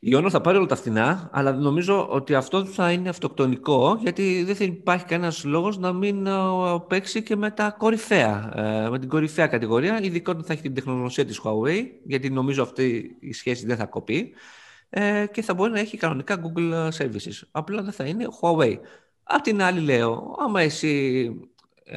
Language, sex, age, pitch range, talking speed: Greek, male, 20-39, 115-180 Hz, 175 wpm